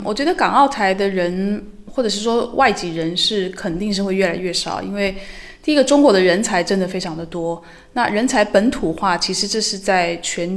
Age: 20-39